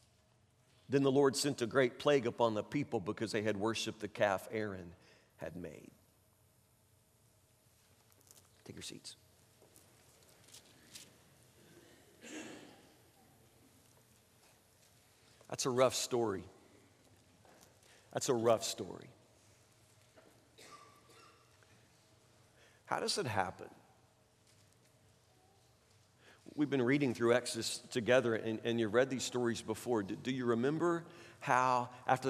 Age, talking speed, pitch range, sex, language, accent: 50-69, 100 wpm, 110-140 Hz, male, English, American